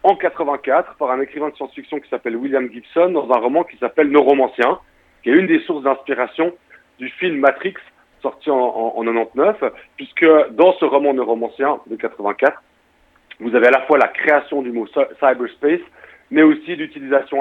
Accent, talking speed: French, 205 wpm